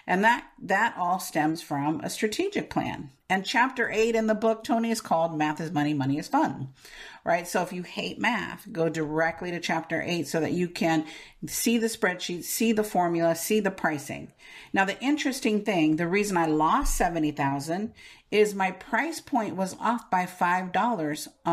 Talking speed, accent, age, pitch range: 180 wpm, American, 50-69, 170-230 Hz